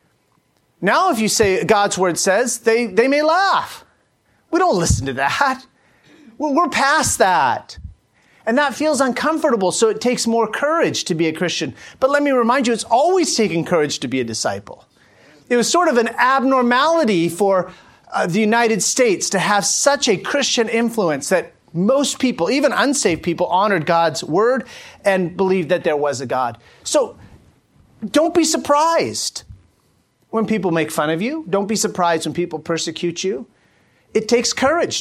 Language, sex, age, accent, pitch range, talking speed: English, male, 40-59, American, 175-260 Hz, 170 wpm